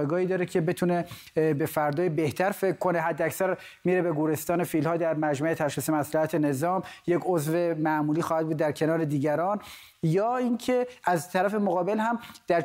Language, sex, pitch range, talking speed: Persian, male, 170-215 Hz, 165 wpm